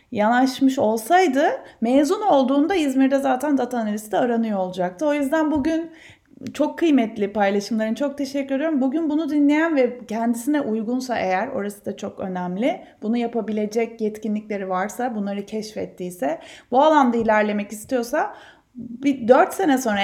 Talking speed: 130 wpm